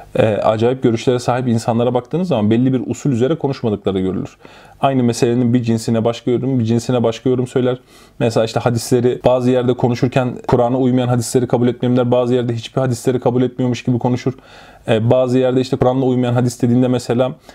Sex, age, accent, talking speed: male, 30-49, native, 180 wpm